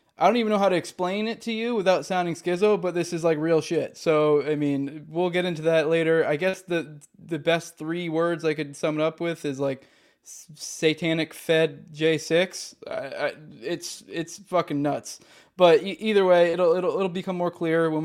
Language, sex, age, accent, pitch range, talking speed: English, male, 20-39, American, 145-185 Hz, 205 wpm